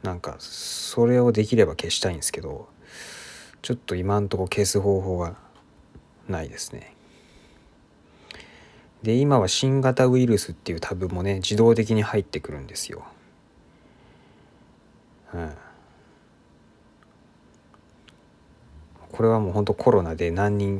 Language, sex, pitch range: Japanese, male, 85-105 Hz